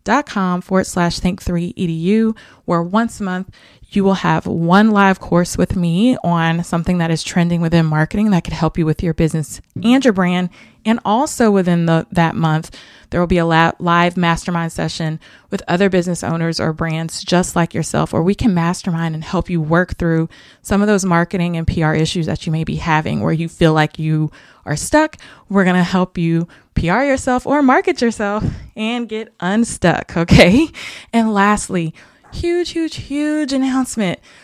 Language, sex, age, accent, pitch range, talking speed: English, female, 20-39, American, 170-210 Hz, 185 wpm